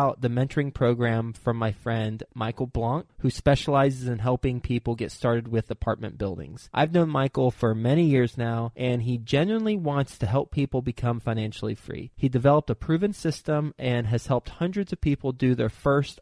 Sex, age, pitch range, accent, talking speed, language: male, 20-39, 120-145 Hz, American, 180 wpm, English